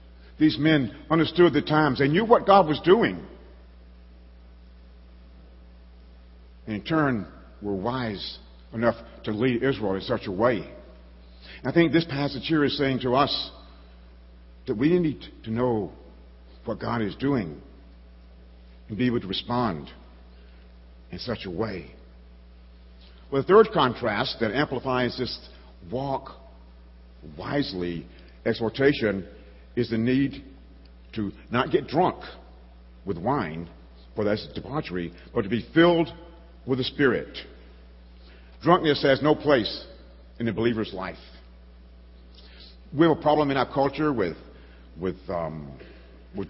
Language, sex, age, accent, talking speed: English, male, 60-79, American, 130 wpm